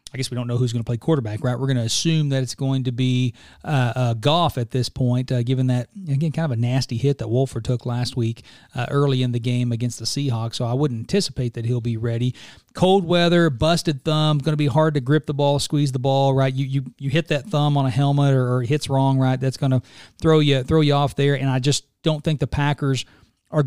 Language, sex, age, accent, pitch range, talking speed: English, male, 40-59, American, 125-145 Hz, 265 wpm